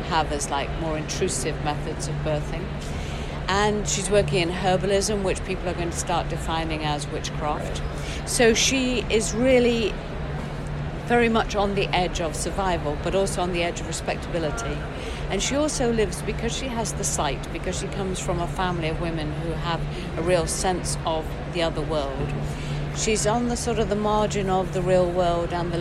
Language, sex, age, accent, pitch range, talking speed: English, female, 50-69, British, 160-200 Hz, 185 wpm